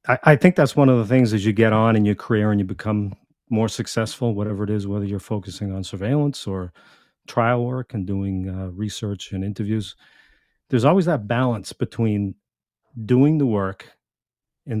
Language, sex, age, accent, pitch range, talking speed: English, male, 40-59, American, 105-125 Hz, 180 wpm